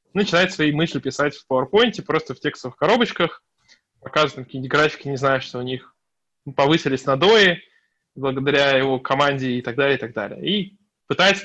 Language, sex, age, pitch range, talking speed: Russian, male, 20-39, 135-175 Hz, 160 wpm